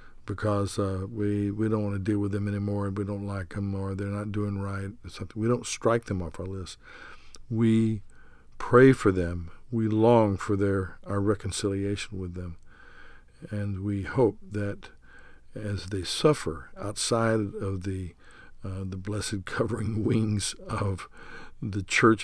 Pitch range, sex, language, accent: 95-110 Hz, male, English, American